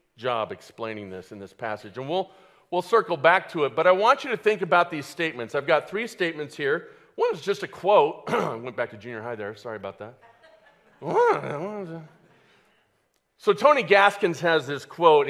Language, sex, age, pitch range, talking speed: English, male, 50-69, 145-215 Hz, 190 wpm